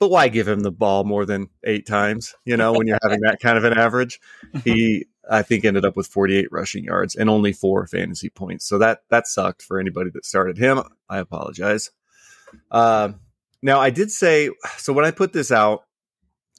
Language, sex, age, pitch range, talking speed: English, male, 30-49, 100-115 Hz, 205 wpm